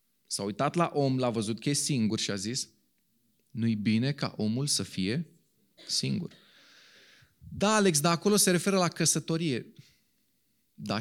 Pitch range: 140-175 Hz